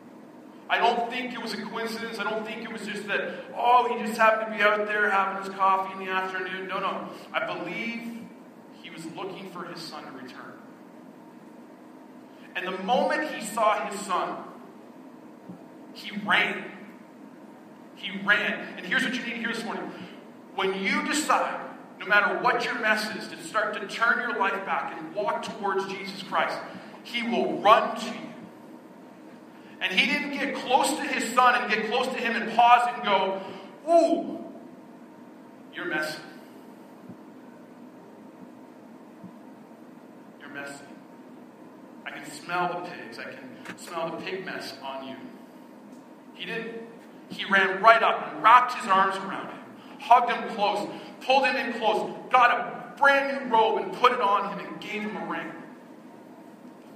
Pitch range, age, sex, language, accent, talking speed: 205-255 Hz, 40-59, male, English, American, 165 wpm